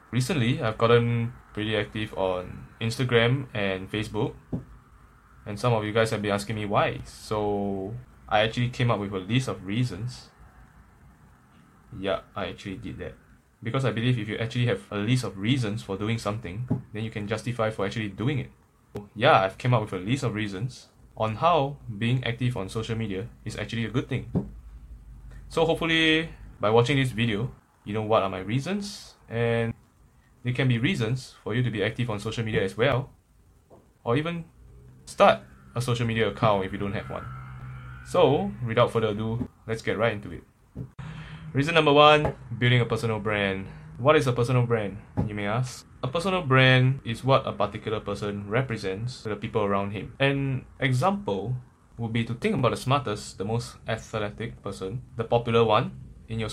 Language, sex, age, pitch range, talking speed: English, male, 10-29, 105-130 Hz, 185 wpm